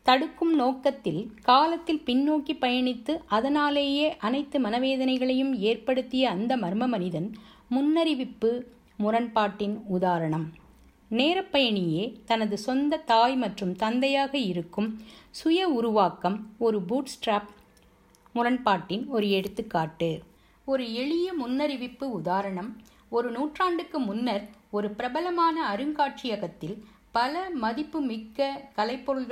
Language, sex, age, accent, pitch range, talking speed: Tamil, female, 50-69, native, 205-275 Hz, 90 wpm